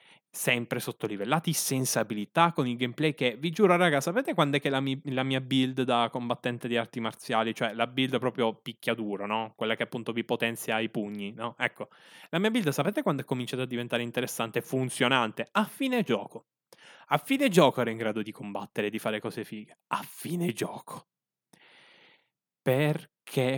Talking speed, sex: 180 wpm, male